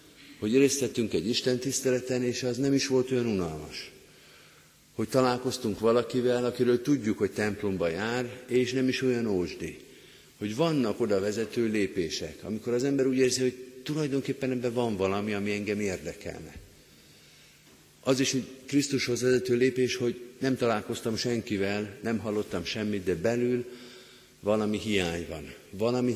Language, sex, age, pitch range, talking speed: Hungarian, male, 50-69, 100-125 Hz, 140 wpm